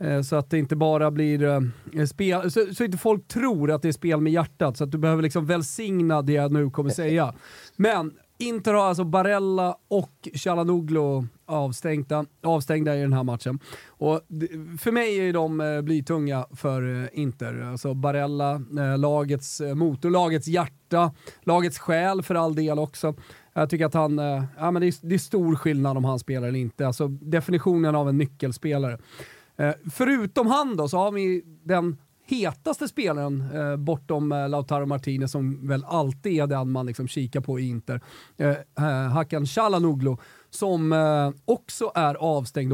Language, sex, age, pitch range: Swedish, male, 30-49, 140-175 Hz